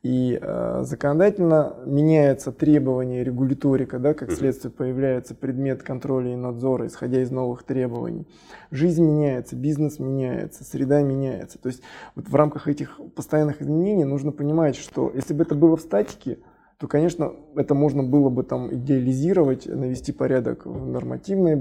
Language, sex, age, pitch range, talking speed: Russian, male, 20-39, 125-150 Hz, 145 wpm